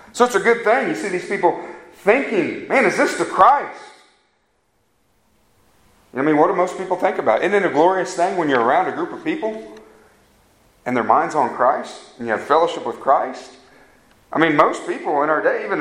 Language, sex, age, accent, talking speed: English, male, 40-59, American, 205 wpm